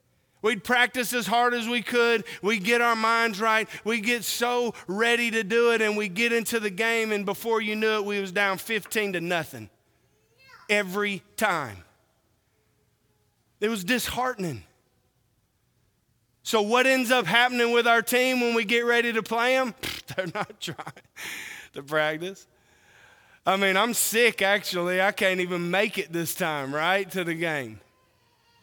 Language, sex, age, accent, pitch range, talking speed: English, male, 30-49, American, 160-230 Hz, 160 wpm